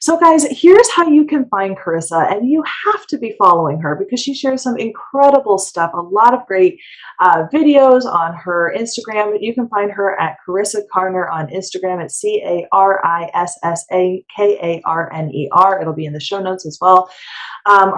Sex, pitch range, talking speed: female, 170-245 Hz, 165 wpm